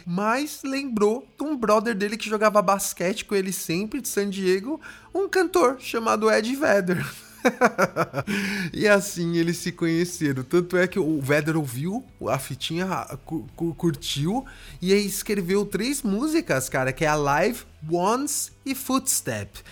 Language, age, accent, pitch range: English, 20-39, Brazilian, 165-220 Hz